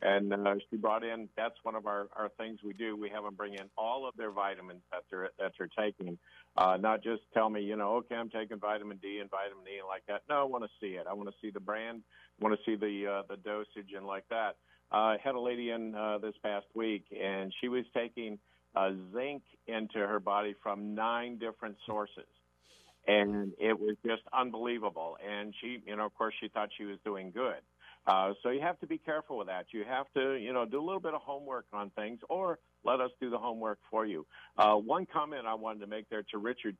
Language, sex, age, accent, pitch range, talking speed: English, male, 50-69, American, 100-115 Hz, 240 wpm